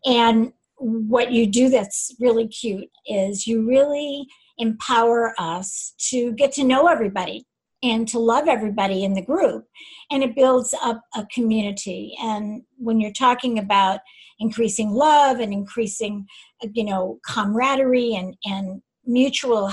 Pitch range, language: 225-280 Hz, English